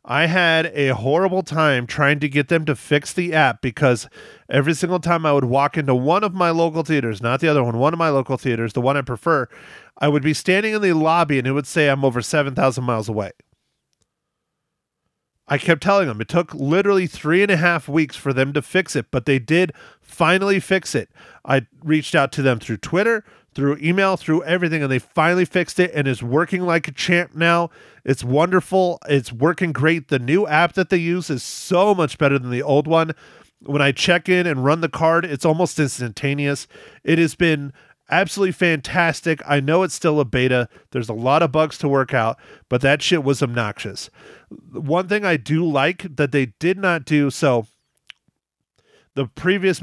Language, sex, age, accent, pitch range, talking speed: English, male, 30-49, American, 135-175 Hz, 200 wpm